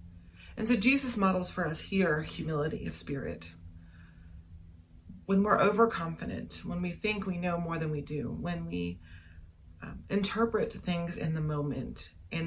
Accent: American